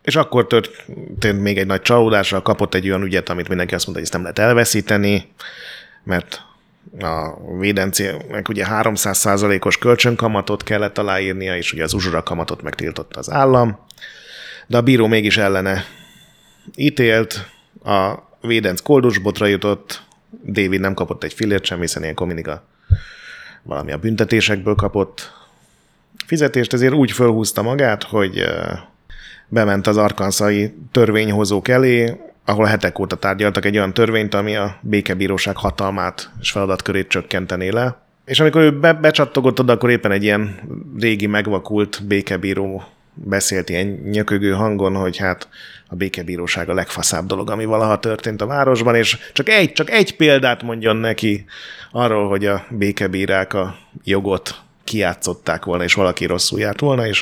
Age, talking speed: 30-49, 145 wpm